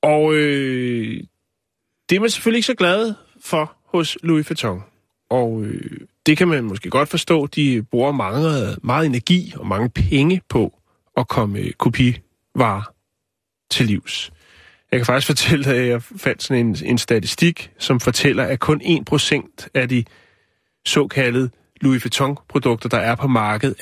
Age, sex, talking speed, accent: 30-49, male, 155 wpm, native